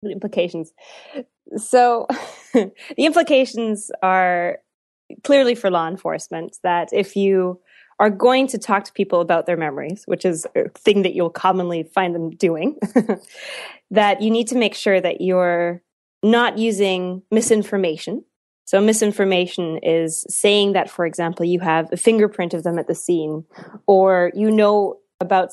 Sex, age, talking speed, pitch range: female, 20-39, 150 wpm, 170-210 Hz